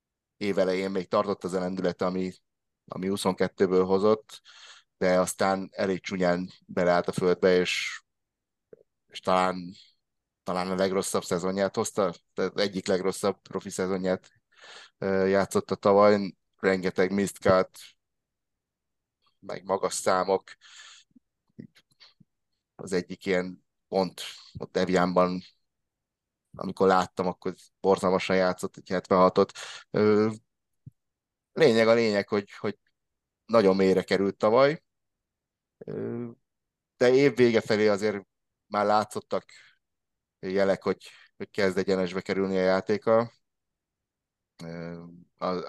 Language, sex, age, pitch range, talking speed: Hungarian, male, 30-49, 90-100 Hz, 95 wpm